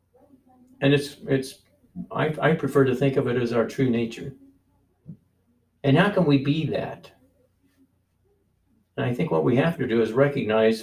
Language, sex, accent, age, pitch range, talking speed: English, male, American, 60-79, 105-135 Hz, 165 wpm